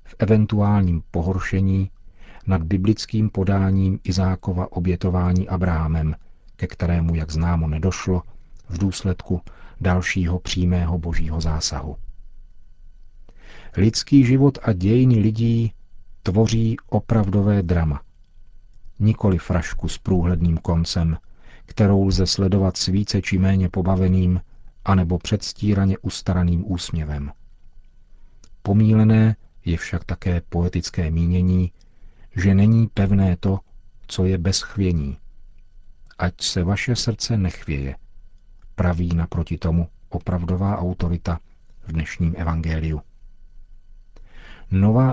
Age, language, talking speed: 50-69, Czech, 95 wpm